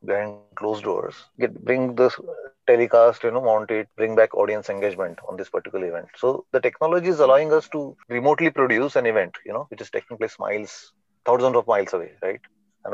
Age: 30-49